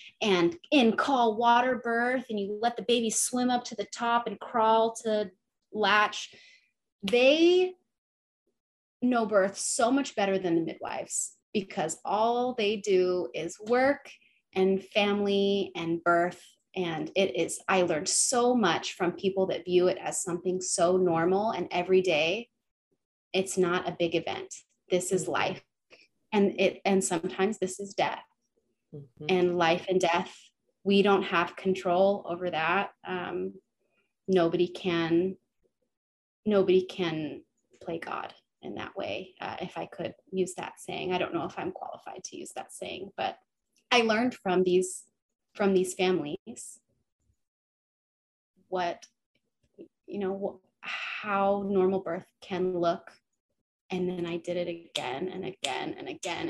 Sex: female